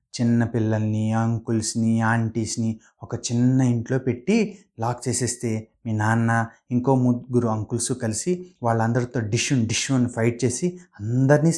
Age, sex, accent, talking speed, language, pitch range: 30-49, male, native, 120 wpm, Telugu, 115-145 Hz